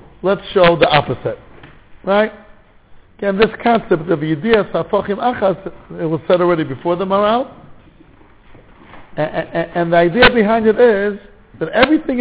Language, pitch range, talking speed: English, 145-210 Hz, 130 wpm